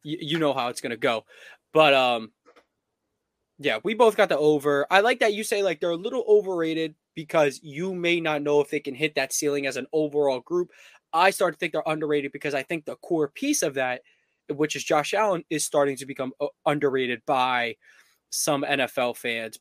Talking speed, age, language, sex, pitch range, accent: 205 wpm, 20-39, English, male, 135-170 Hz, American